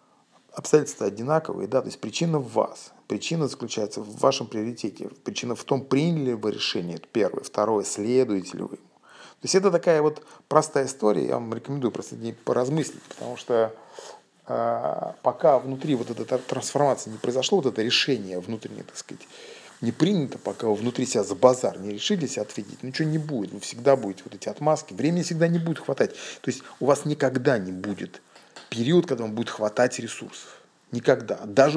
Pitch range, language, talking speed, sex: 115-155 Hz, Russian, 180 wpm, male